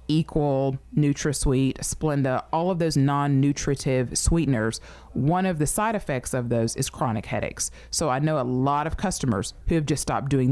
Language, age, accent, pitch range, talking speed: English, 30-49, American, 130-160 Hz, 170 wpm